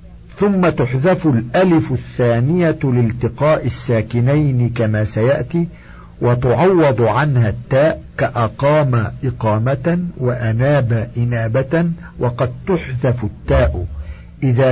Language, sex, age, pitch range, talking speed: Arabic, male, 50-69, 110-150 Hz, 75 wpm